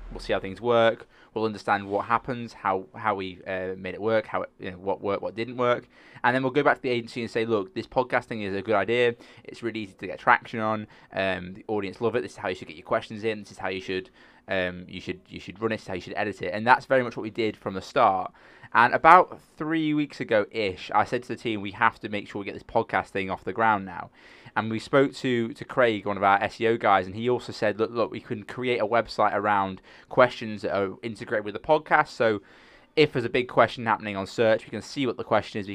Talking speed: 275 wpm